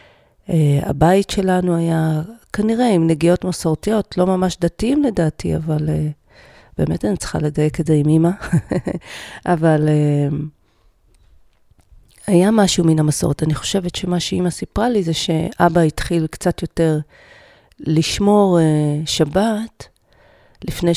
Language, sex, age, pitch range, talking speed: Hebrew, female, 40-59, 155-190 Hz, 125 wpm